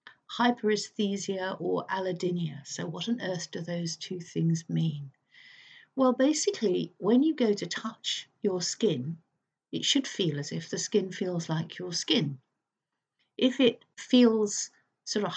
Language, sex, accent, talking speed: English, female, British, 145 wpm